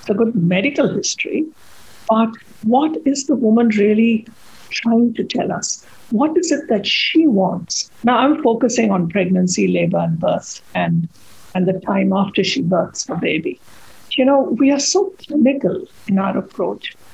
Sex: female